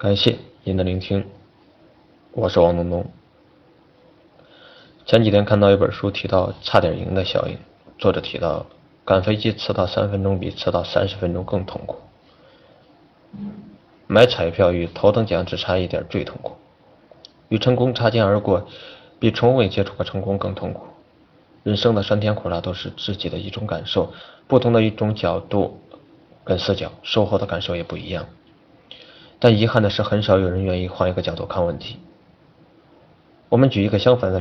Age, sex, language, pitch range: 20-39, male, Chinese, 95-115 Hz